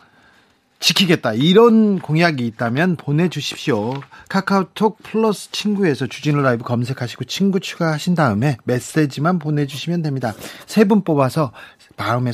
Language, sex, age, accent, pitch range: Korean, male, 40-59, native, 130-185 Hz